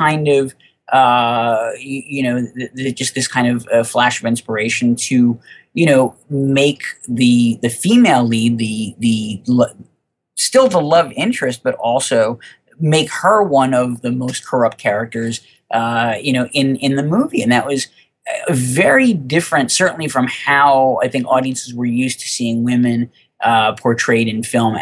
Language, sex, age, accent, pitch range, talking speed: English, male, 30-49, American, 115-140 Hz, 160 wpm